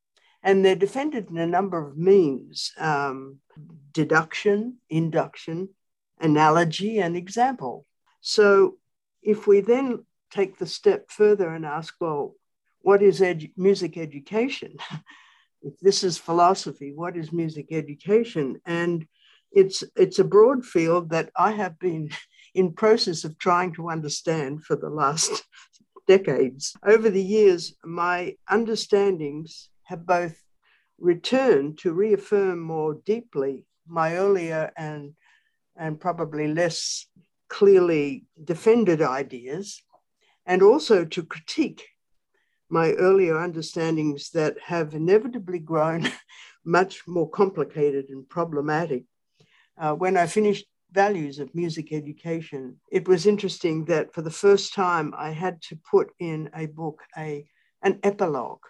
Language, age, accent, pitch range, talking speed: English, 60-79, Australian, 160-205 Hz, 125 wpm